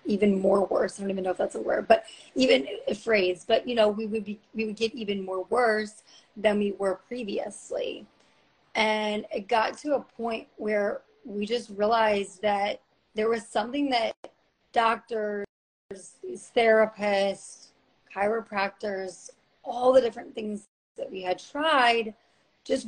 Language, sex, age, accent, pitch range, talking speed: English, female, 30-49, American, 200-235 Hz, 155 wpm